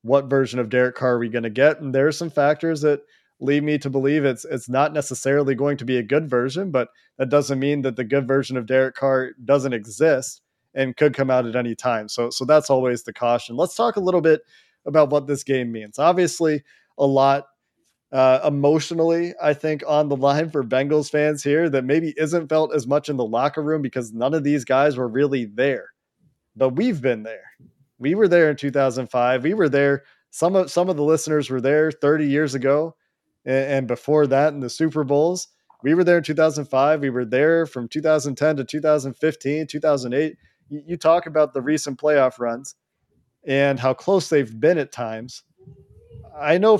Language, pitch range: English, 130-155 Hz